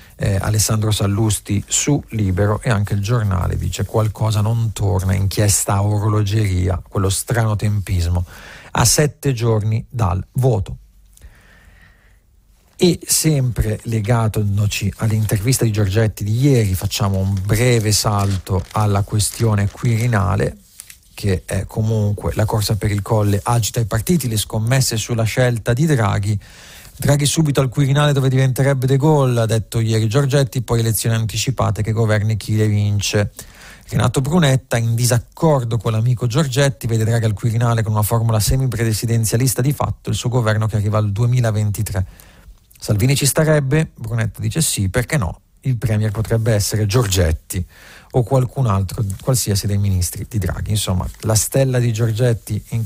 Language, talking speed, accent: Italian, 145 wpm, native